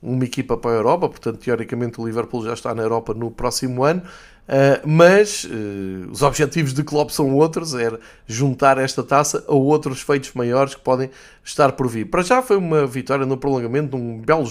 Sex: male